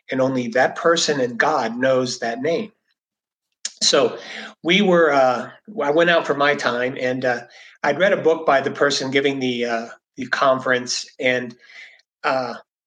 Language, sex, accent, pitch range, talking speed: English, male, American, 125-160 Hz, 165 wpm